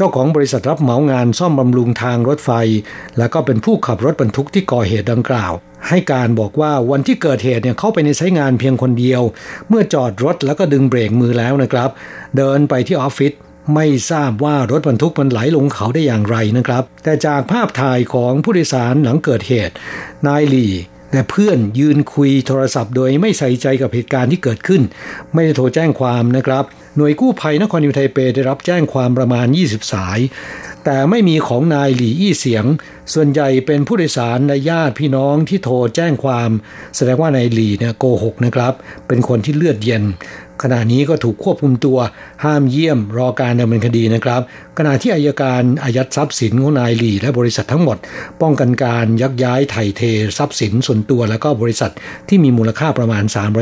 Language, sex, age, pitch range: Thai, male, 60-79, 120-150 Hz